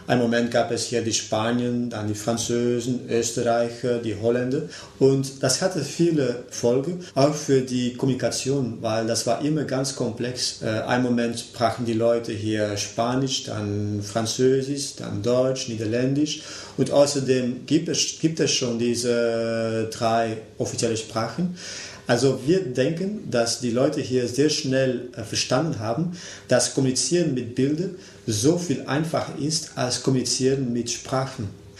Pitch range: 115-135 Hz